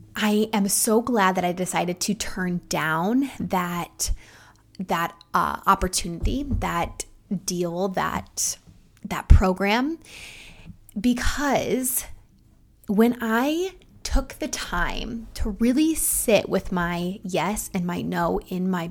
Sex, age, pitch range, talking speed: female, 20-39, 180-220 Hz, 115 wpm